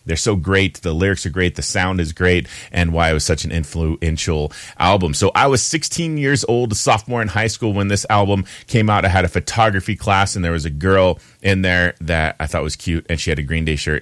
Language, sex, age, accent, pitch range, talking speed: English, male, 30-49, American, 80-105 Hz, 255 wpm